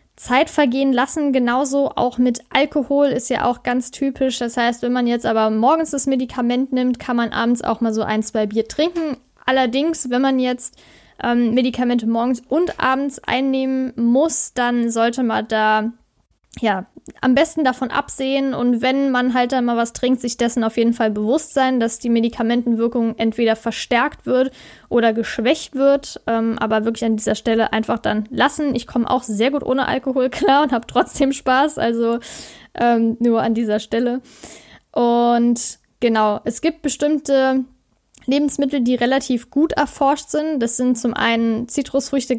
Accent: German